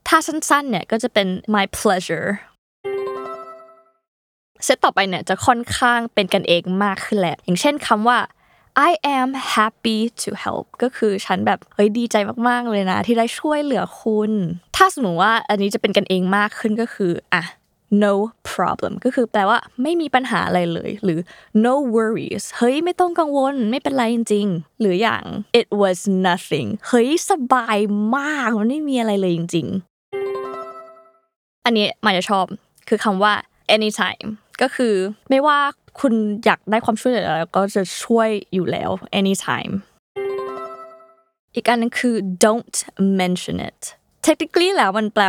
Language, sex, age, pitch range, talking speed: English, female, 20-39, 190-250 Hz, 35 wpm